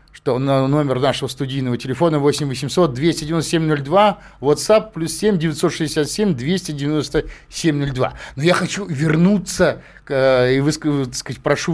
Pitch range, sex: 135-190 Hz, male